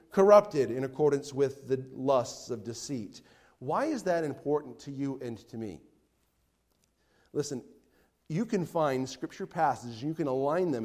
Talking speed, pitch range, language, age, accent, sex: 155 wpm, 140-220 Hz, English, 40-59, American, male